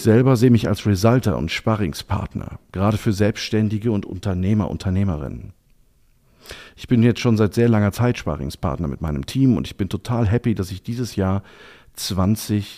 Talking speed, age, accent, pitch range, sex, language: 165 wpm, 50-69, German, 95-120 Hz, male, German